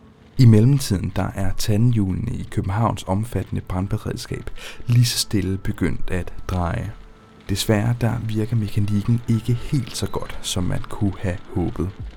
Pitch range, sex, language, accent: 95-115 Hz, male, Danish, native